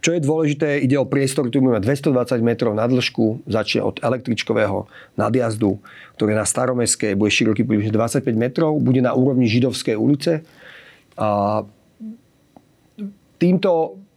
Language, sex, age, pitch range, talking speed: Slovak, male, 40-59, 115-140 Hz, 125 wpm